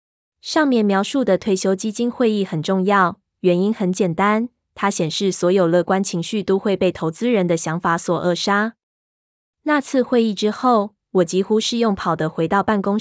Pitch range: 175-215 Hz